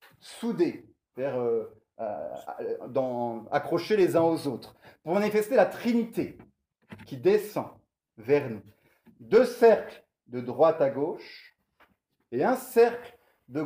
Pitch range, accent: 130-205 Hz, French